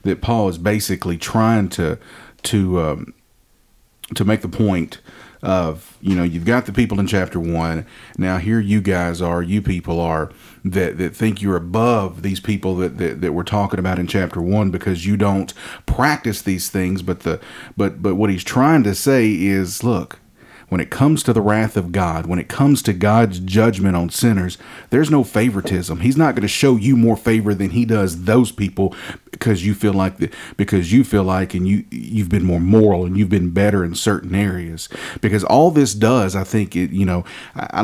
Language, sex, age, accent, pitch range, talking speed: English, male, 40-59, American, 95-115 Hz, 200 wpm